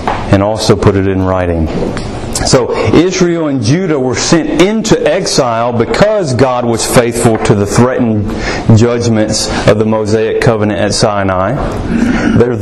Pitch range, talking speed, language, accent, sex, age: 105-130 Hz, 140 wpm, English, American, male, 40-59